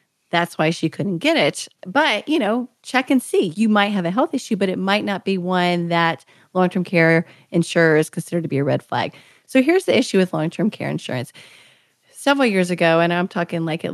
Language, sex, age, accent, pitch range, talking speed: English, female, 30-49, American, 170-215 Hz, 215 wpm